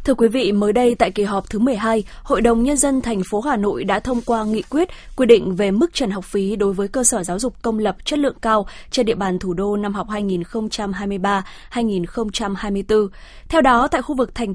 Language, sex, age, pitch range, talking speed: Vietnamese, female, 20-39, 200-255 Hz, 225 wpm